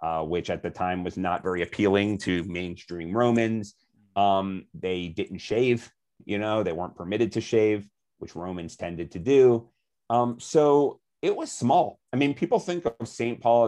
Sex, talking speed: male, 175 wpm